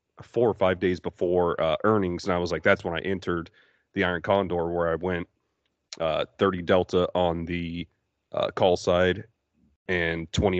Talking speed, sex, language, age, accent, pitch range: 175 wpm, male, English, 30-49, American, 85-95 Hz